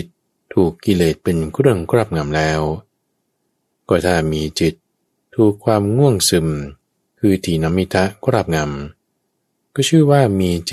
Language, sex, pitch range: Thai, male, 75-105 Hz